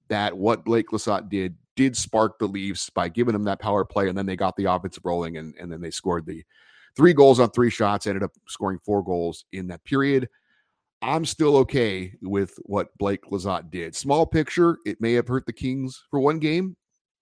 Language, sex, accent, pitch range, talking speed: English, male, American, 100-125 Hz, 210 wpm